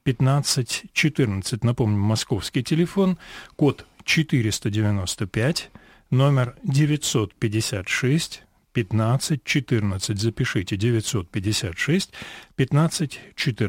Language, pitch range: Russian, 110-145 Hz